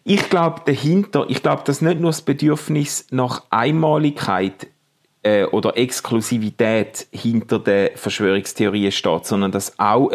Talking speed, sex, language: 130 wpm, male, German